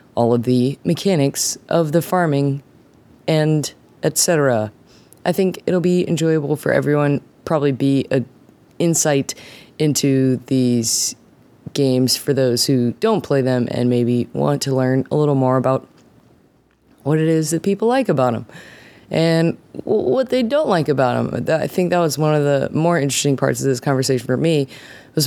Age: 20-39